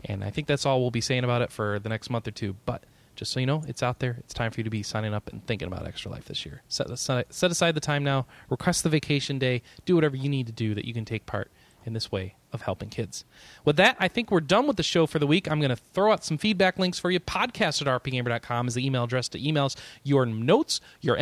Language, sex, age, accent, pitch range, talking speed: English, male, 20-39, American, 110-155 Hz, 285 wpm